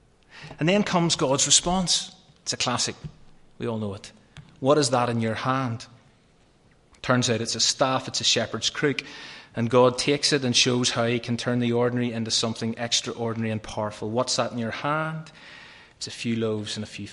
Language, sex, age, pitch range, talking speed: English, male, 30-49, 110-130 Hz, 195 wpm